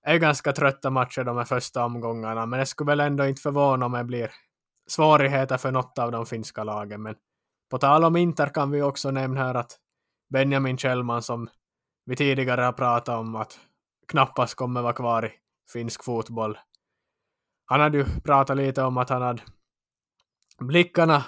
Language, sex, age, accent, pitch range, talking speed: Swedish, male, 20-39, Finnish, 115-140 Hz, 180 wpm